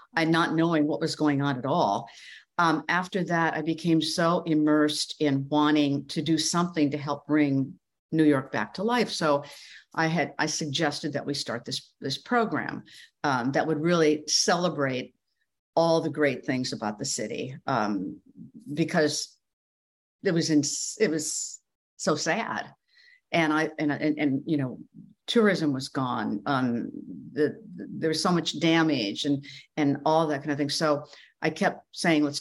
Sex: female